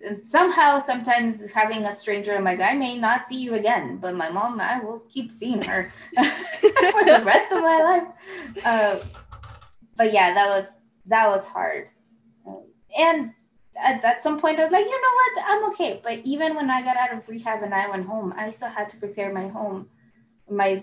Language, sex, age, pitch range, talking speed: English, female, 20-39, 185-235 Hz, 200 wpm